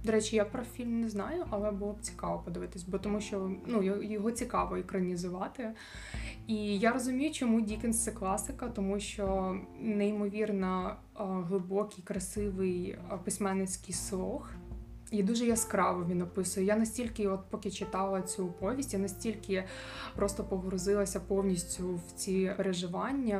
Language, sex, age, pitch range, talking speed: Ukrainian, female, 20-39, 190-215 Hz, 135 wpm